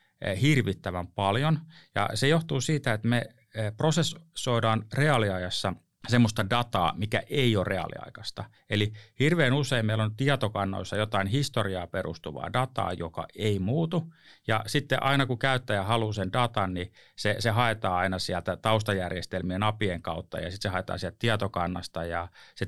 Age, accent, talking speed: 30-49, native, 145 wpm